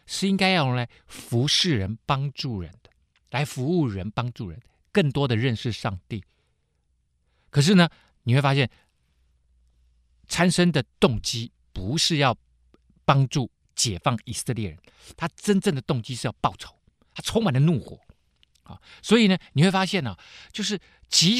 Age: 50-69